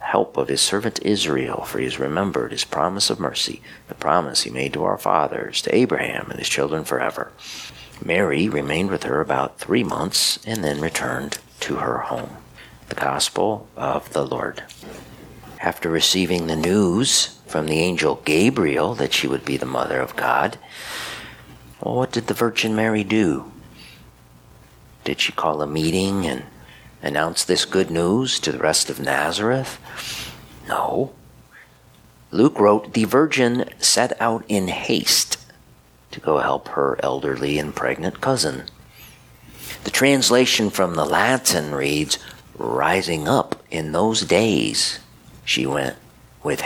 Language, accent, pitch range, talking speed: English, American, 65-105 Hz, 145 wpm